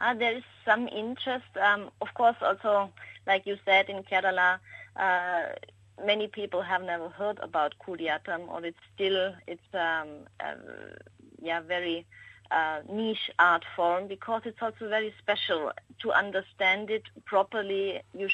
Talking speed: 145 wpm